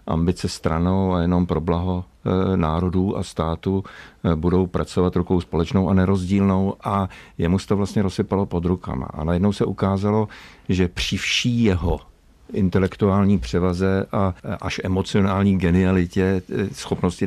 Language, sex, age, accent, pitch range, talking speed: Czech, male, 50-69, native, 90-100 Hz, 130 wpm